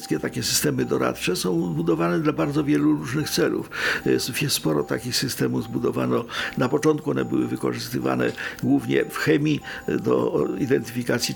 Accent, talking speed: native, 135 wpm